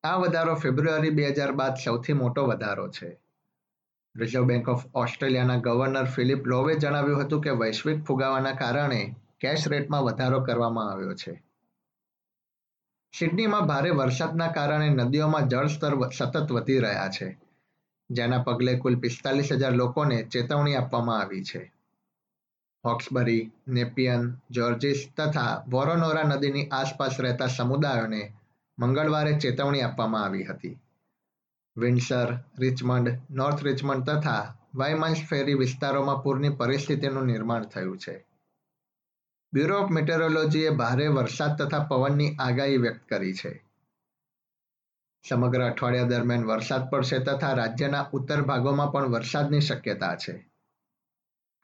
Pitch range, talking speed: 125-145 Hz, 80 wpm